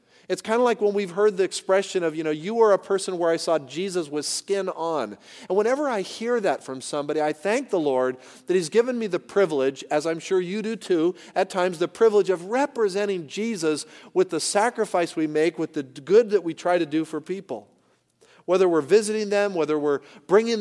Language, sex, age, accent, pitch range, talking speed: English, male, 40-59, American, 150-200 Hz, 220 wpm